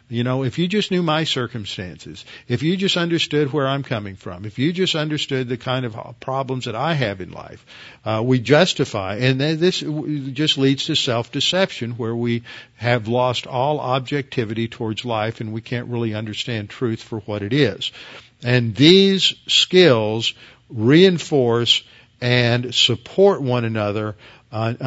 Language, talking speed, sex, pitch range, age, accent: English, 160 wpm, male, 115-140 Hz, 50-69, American